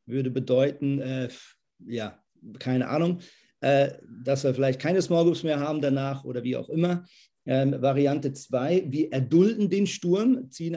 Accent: German